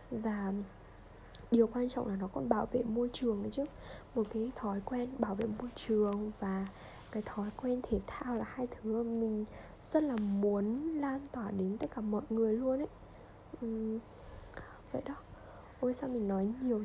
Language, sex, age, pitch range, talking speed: Vietnamese, female, 10-29, 210-255 Hz, 180 wpm